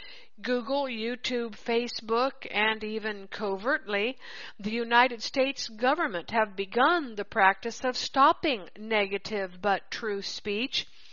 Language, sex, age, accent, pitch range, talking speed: English, female, 60-79, American, 210-265 Hz, 110 wpm